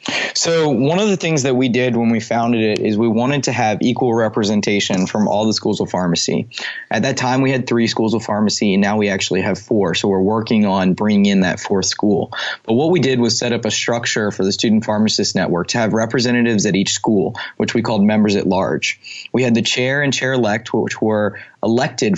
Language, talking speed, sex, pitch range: English, 230 wpm, male, 105-125 Hz